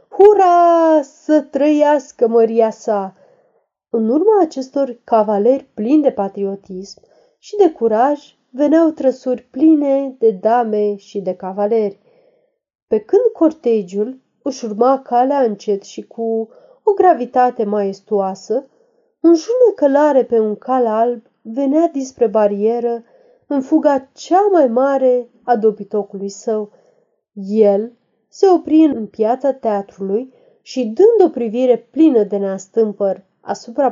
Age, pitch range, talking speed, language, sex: 30-49, 220-335 Hz, 120 wpm, Romanian, female